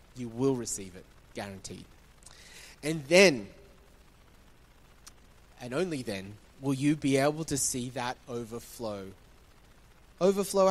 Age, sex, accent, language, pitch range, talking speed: 20-39, male, Australian, English, 135-210 Hz, 105 wpm